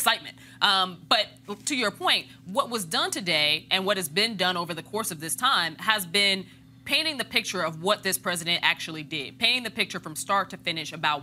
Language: English